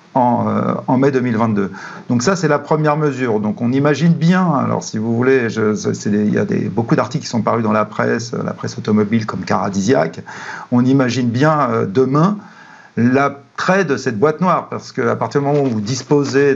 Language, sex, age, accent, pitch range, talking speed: French, male, 50-69, French, 115-145 Hz, 205 wpm